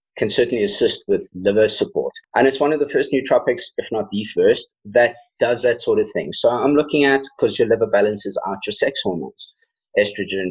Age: 30-49